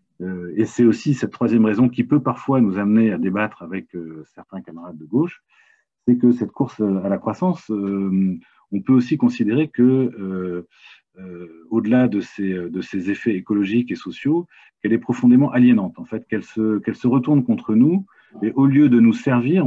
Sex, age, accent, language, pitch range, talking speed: male, 40-59, French, French, 95-125 Hz, 190 wpm